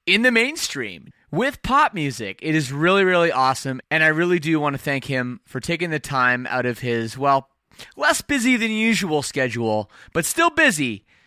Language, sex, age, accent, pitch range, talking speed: English, male, 20-39, American, 130-190 Hz, 185 wpm